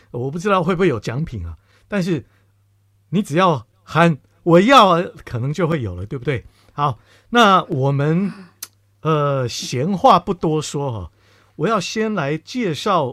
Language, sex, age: Chinese, male, 50-69